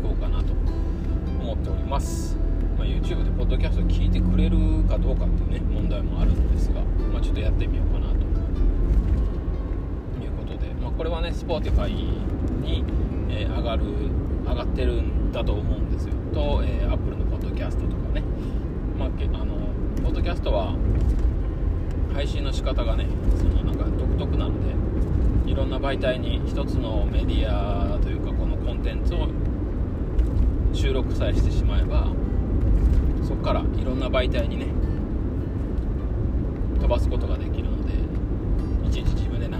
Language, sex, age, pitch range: Japanese, male, 20-39, 80-90 Hz